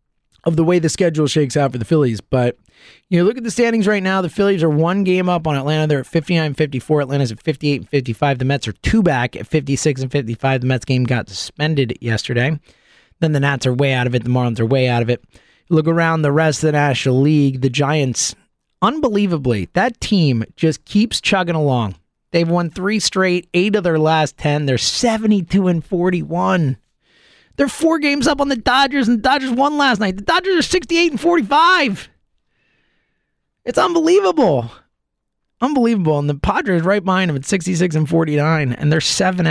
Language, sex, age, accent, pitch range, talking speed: English, male, 30-49, American, 135-195 Hz, 190 wpm